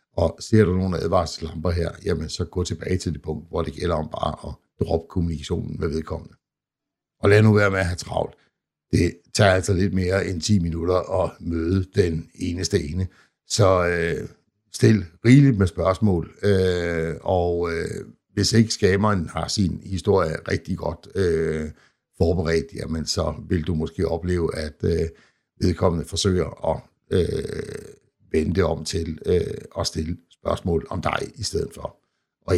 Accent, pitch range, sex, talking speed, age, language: native, 85-100 Hz, male, 160 wpm, 60-79, Danish